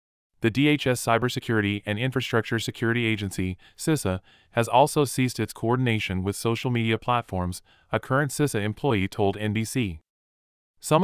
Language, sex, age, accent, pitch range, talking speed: English, male, 30-49, American, 100-125 Hz, 130 wpm